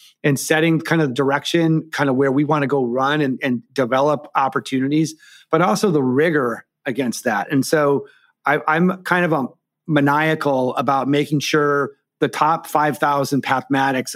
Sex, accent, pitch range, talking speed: male, American, 135-155 Hz, 155 wpm